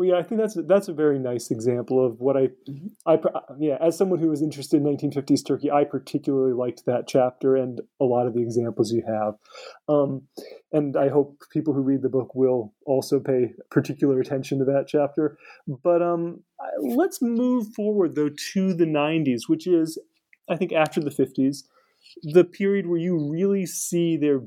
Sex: male